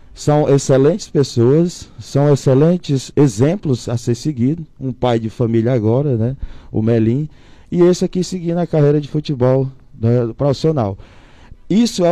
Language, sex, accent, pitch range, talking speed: Portuguese, male, Brazilian, 120-155 Hz, 145 wpm